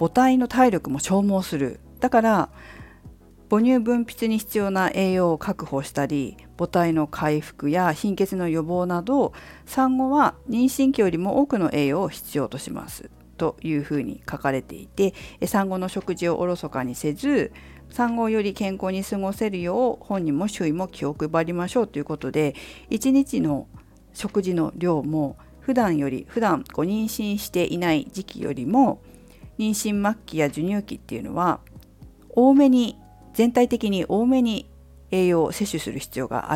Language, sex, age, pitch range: Japanese, female, 50-69, 155-240 Hz